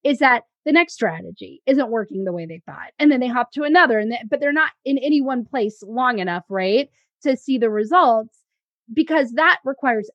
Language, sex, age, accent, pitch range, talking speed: English, female, 20-39, American, 235-310 Hz, 215 wpm